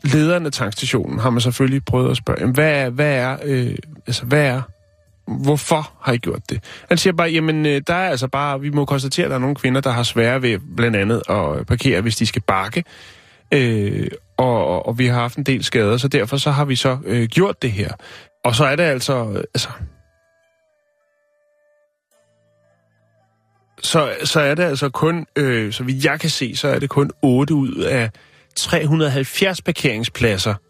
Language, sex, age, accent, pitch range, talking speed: Danish, male, 30-49, native, 120-155 Hz, 185 wpm